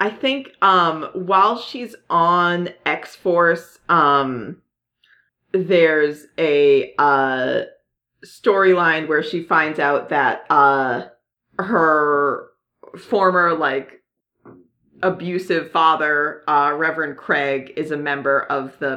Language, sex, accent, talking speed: English, female, American, 100 wpm